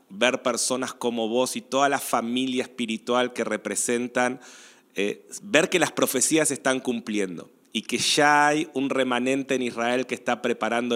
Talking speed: 165 wpm